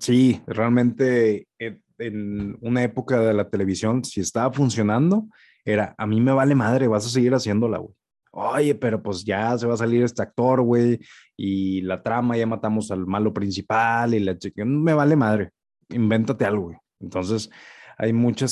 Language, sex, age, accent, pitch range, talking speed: Spanish, male, 20-39, Mexican, 105-125 Hz, 170 wpm